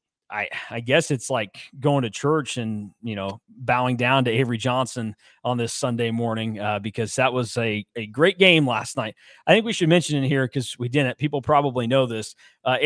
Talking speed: 210 wpm